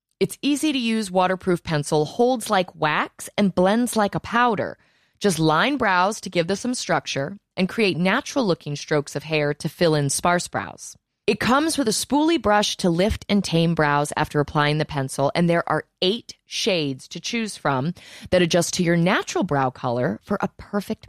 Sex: female